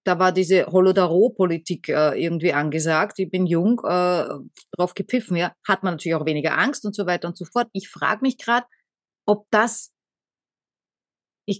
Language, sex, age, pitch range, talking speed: German, female, 30-49, 180-225 Hz, 170 wpm